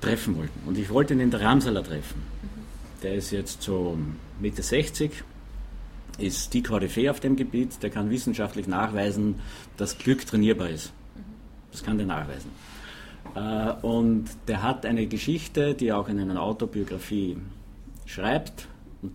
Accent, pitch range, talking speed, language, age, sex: Austrian, 100-120 Hz, 145 wpm, German, 50-69, male